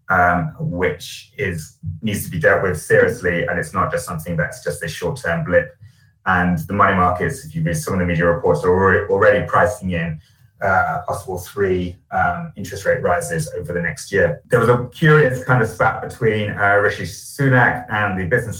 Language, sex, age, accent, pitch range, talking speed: English, male, 30-49, British, 95-140 Hz, 195 wpm